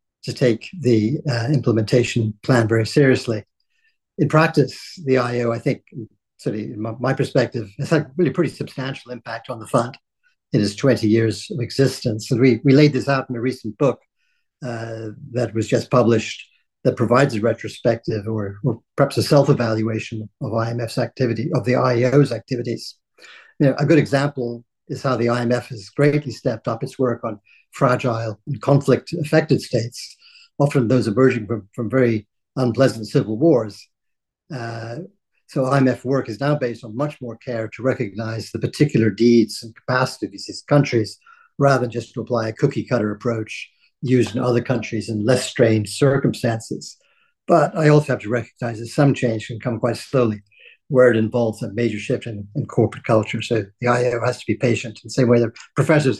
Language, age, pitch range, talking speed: English, 60-79, 115-140 Hz, 175 wpm